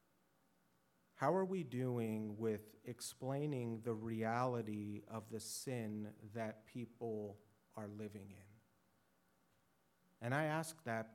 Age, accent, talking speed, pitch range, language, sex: 40-59, American, 110 wpm, 100-120 Hz, English, male